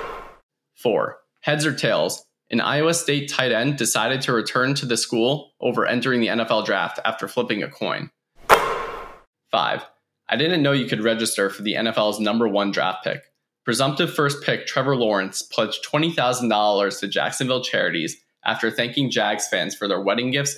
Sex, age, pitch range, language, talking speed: male, 20-39, 110-135 Hz, English, 165 wpm